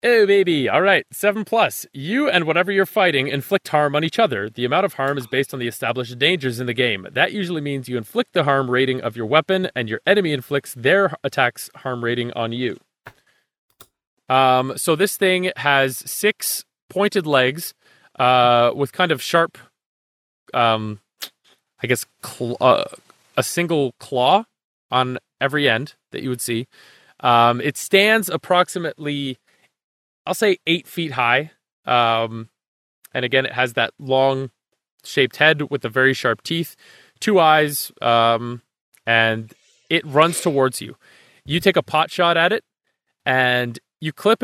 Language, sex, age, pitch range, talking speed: English, male, 30-49, 125-175 Hz, 160 wpm